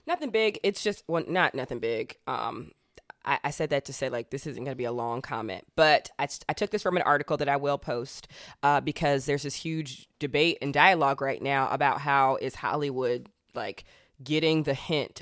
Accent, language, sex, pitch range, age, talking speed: American, English, female, 140-165 Hz, 20-39, 210 wpm